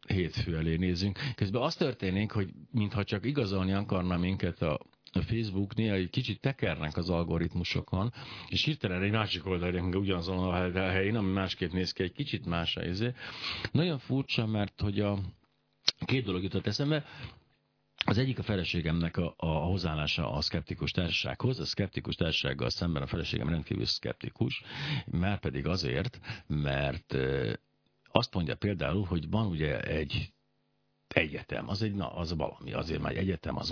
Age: 50-69